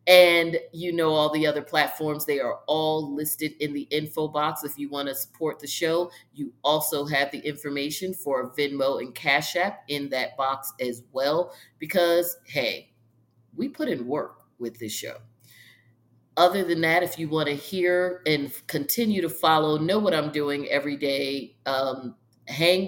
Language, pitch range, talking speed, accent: English, 130-160 Hz, 170 wpm, American